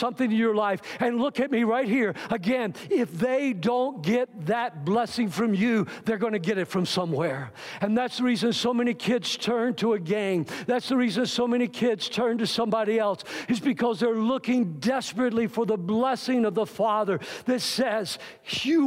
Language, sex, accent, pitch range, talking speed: English, male, American, 210-245 Hz, 195 wpm